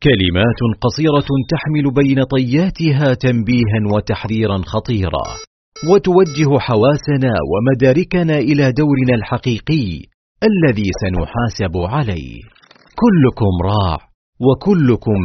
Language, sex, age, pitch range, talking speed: Arabic, male, 40-59, 105-150 Hz, 80 wpm